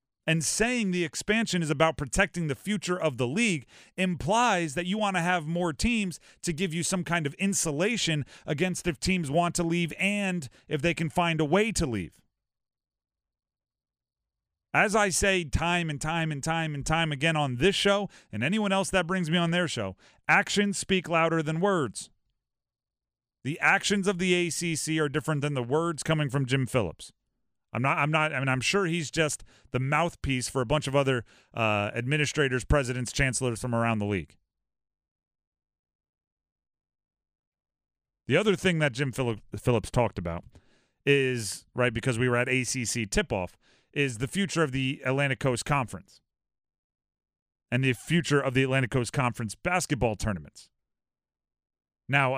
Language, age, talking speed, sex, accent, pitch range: English, 40-59, 165 wpm, male, American, 120-175 Hz